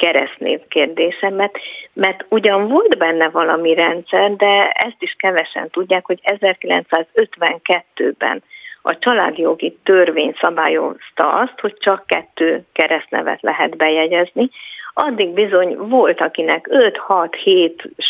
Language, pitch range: Hungarian, 170-235 Hz